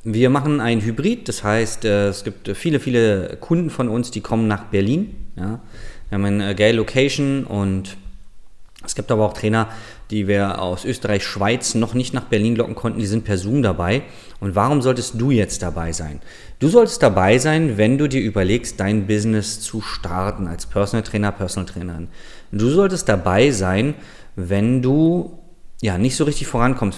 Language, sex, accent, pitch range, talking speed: German, male, German, 100-125 Hz, 175 wpm